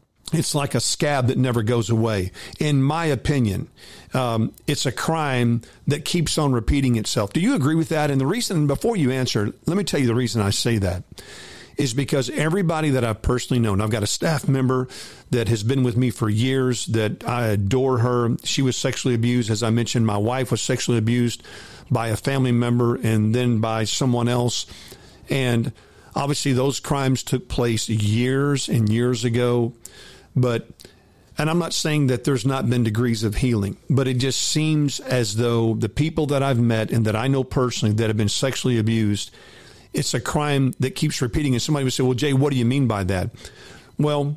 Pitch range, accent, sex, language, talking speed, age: 115-140 Hz, American, male, English, 195 wpm, 50-69